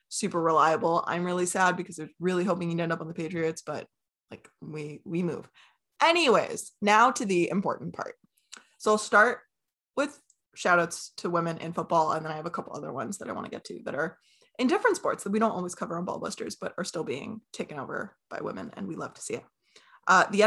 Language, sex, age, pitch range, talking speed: English, female, 20-39, 170-200 Hz, 230 wpm